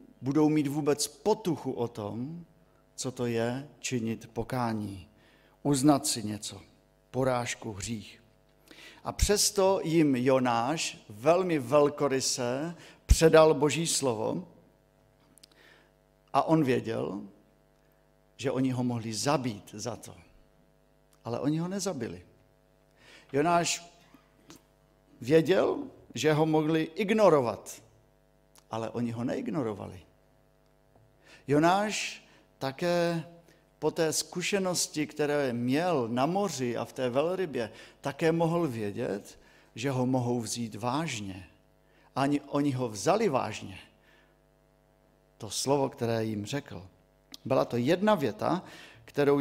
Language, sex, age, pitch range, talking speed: Czech, male, 50-69, 120-160 Hz, 105 wpm